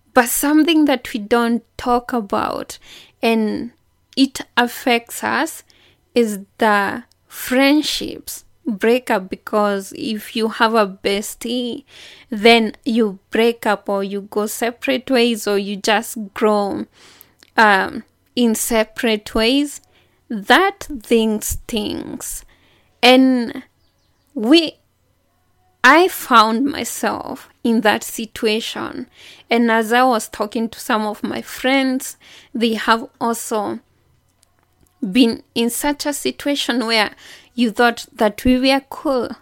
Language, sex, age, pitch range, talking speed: English, female, 20-39, 215-255 Hz, 115 wpm